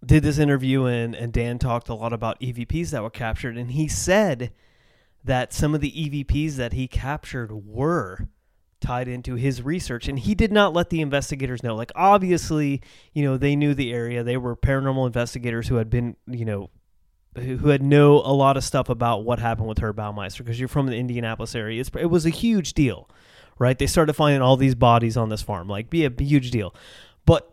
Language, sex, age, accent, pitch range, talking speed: English, male, 30-49, American, 115-150 Hz, 215 wpm